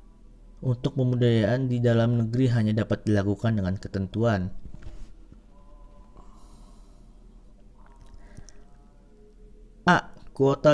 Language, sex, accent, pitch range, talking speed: Indonesian, male, native, 105-125 Hz, 65 wpm